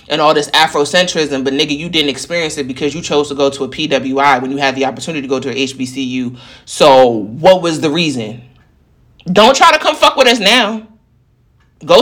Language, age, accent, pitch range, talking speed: English, 30-49, American, 125-170 Hz, 210 wpm